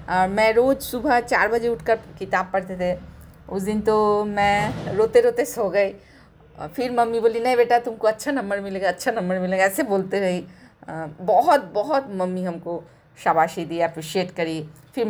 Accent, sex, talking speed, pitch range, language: native, female, 165 wpm, 180-230 Hz, Hindi